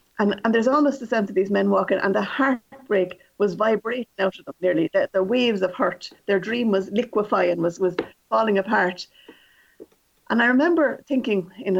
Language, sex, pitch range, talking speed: English, female, 190-255 Hz, 195 wpm